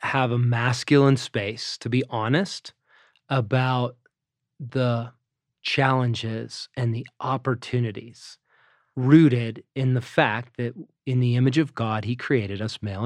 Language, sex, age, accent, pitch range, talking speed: English, male, 30-49, American, 120-140 Hz, 125 wpm